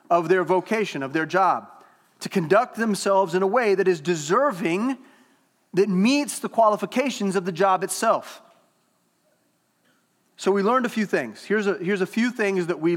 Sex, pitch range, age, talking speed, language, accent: male, 180-220 Hz, 30-49, 165 wpm, English, American